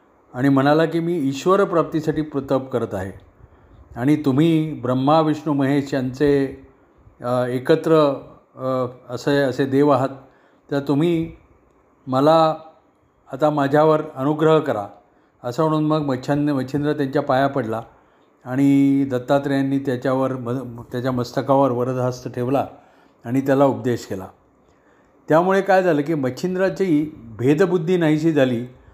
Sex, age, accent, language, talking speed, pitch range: male, 40-59, native, Marathi, 110 wpm, 130-160 Hz